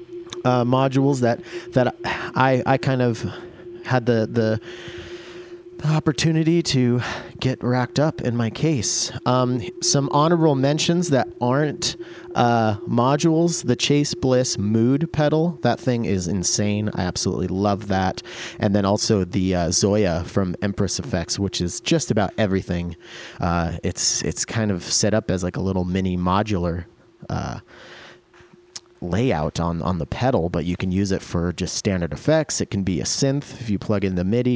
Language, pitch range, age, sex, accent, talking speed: English, 95-135 Hz, 30-49, male, American, 165 wpm